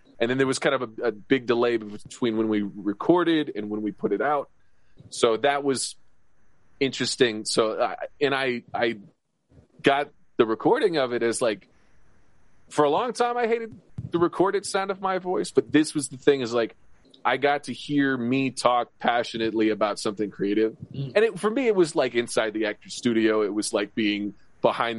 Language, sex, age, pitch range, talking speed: English, male, 20-39, 110-145 Hz, 195 wpm